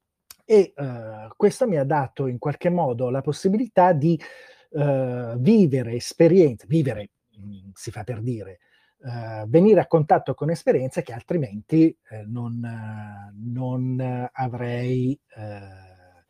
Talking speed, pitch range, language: 105 wpm, 115-150 Hz, Italian